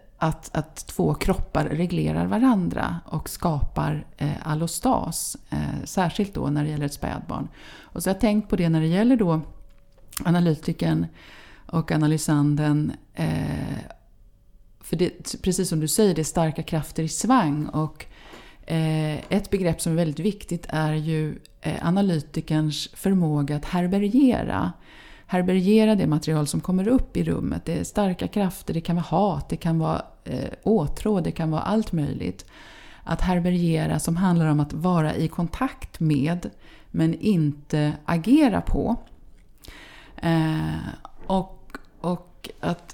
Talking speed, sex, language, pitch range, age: 140 wpm, female, Swedish, 155-185 Hz, 30-49